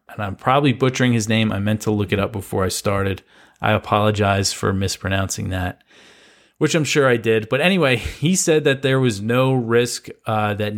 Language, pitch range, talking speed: English, 105-125 Hz, 200 wpm